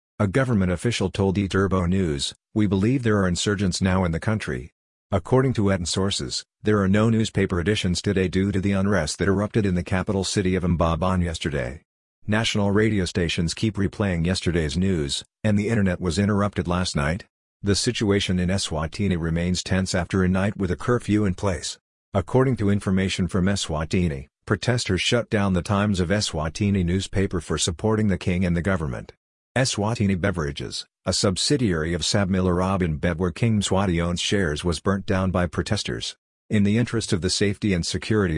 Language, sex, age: English, male, 50-69